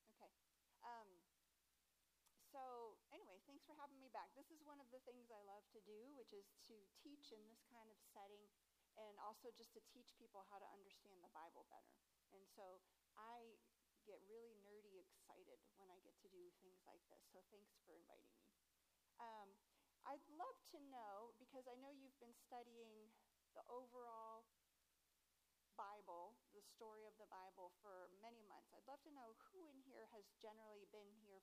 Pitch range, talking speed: 200-245 Hz, 175 wpm